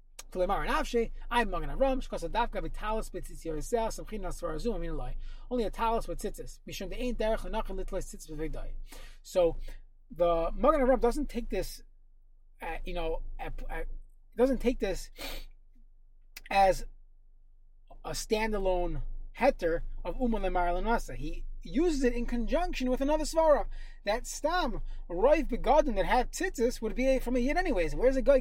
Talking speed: 95 wpm